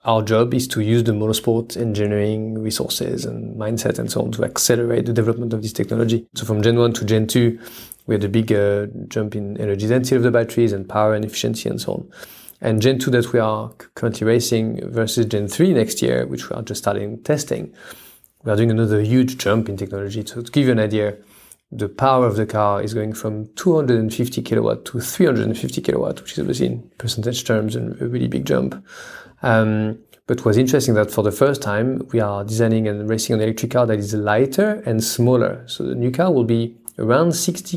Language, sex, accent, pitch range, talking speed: English, male, French, 105-120 Hz, 215 wpm